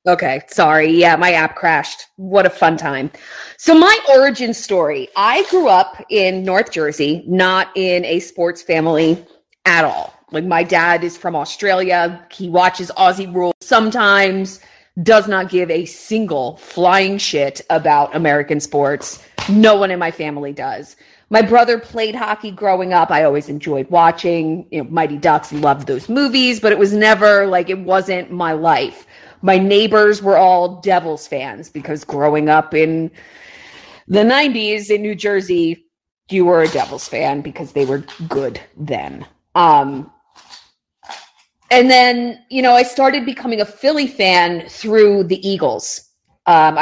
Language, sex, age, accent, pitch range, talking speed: English, female, 30-49, American, 165-210 Hz, 150 wpm